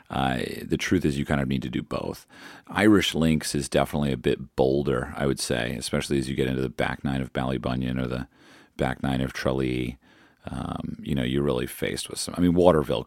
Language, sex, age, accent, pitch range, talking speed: English, male, 40-59, American, 70-95 Hz, 220 wpm